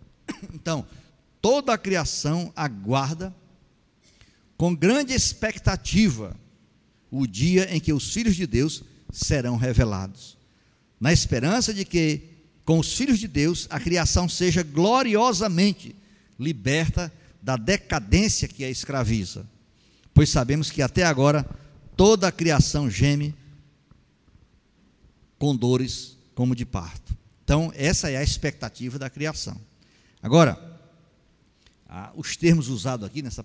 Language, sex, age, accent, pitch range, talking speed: Portuguese, male, 50-69, Brazilian, 120-170 Hz, 115 wpm